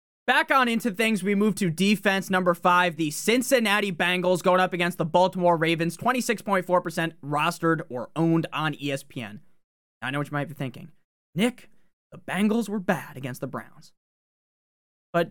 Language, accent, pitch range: English, American, 170-245 Hz